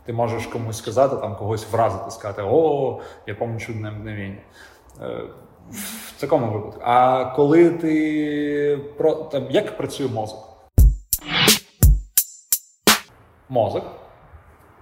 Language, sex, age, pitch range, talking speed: Ukrainian, male, 30-49, 100-120 Hz, 100 wpm